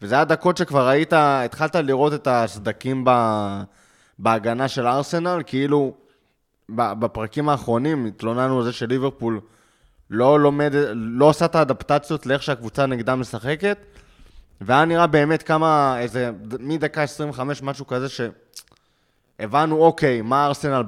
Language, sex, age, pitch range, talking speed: Hebrew, male, 20-39, 115-145 Hz, 130 wpm